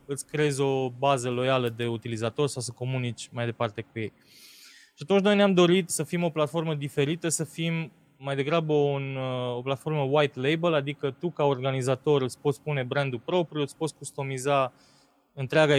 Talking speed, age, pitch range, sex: 170 wpm, 20-39, 135-170 Hz, male